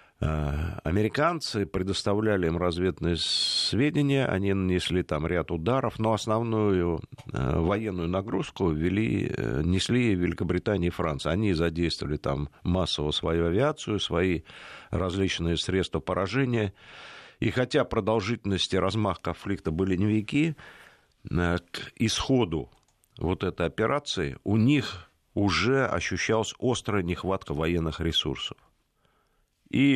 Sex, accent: male, native